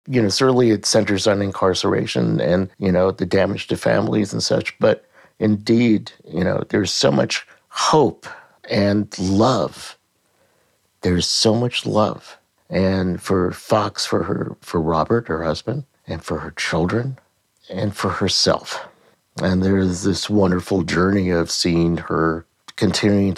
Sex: male